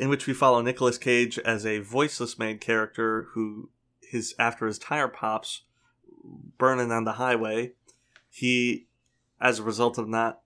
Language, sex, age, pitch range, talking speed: English, male, 20-39, 110-125 Hz, 155 wpm